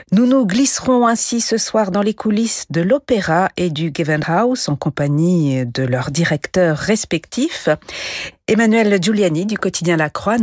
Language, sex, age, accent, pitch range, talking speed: French, female, 50-69, French, 165-225 Hz, 155 wpm